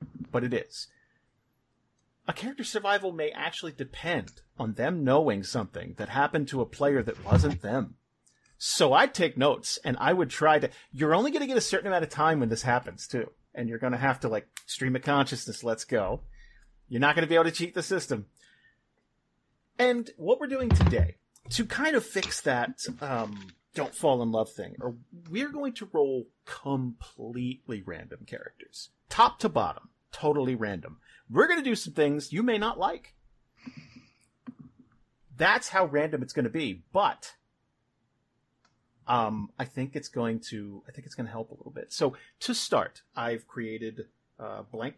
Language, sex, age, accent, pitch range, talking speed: English, male, 40-59, American, 120-165 Hz, 175 wpm